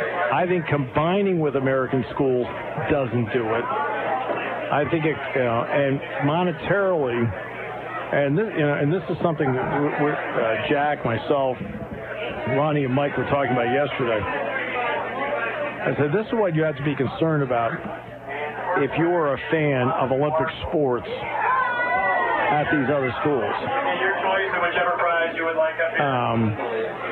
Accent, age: American, 50-69